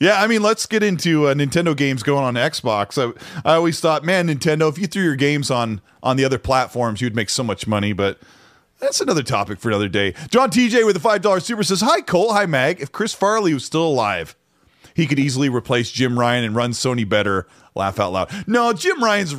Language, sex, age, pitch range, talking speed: English, male, 30-49, 125-185 Hz, 225 wpm